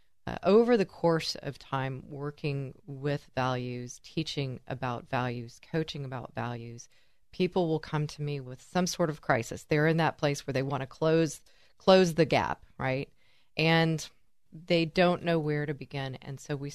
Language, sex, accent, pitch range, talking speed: English, female, American, 135-170 Hz, 170 wpm